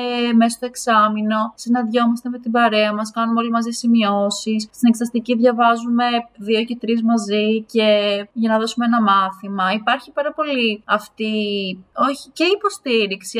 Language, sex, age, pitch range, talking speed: English, female, 20-39, 200-245 Hz, 135 wpm